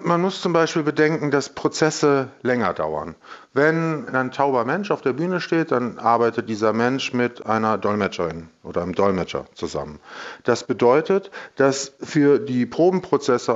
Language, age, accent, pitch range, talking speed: German, 40-59, German, 115-145 Hz, 150 wpm